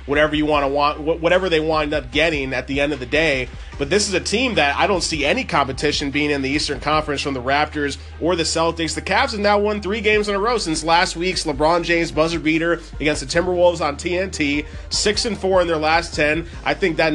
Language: English